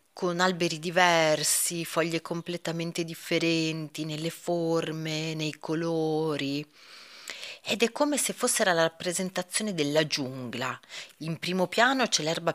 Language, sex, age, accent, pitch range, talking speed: Italian, female, 30-49, native, 150-220 Hz, 115 wpm